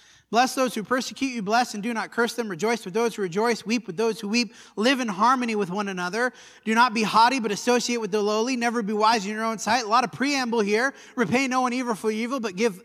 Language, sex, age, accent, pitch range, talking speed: English, male, 30-49, American, 200-260 Hz, 260 wpm